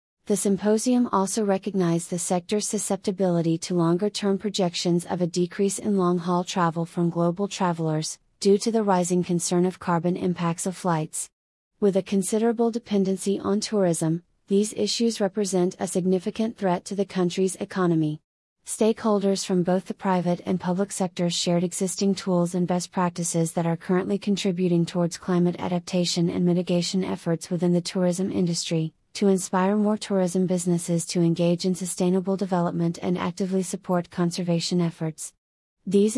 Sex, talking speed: female, 150 wpm